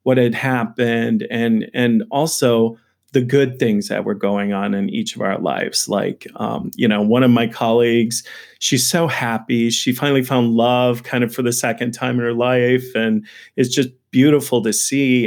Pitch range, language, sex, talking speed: 115-140 Hz, English, male, 190 wpm